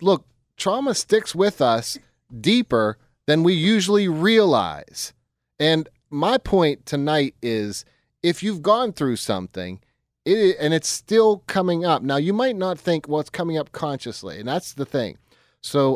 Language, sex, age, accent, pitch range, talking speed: English, male, 30-49, American, 125-175 Hz, 145 wpm